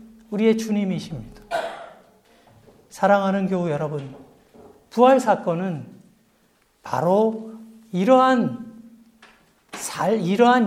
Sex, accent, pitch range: male, native, 215-250 Hz